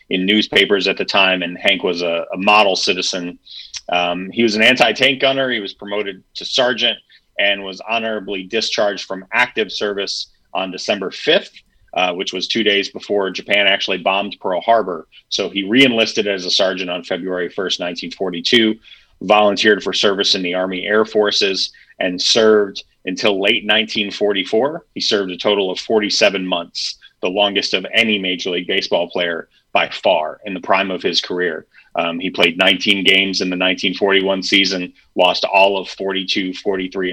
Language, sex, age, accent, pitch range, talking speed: English, male, 30-49, American, 95-110 Hz, 170 wpm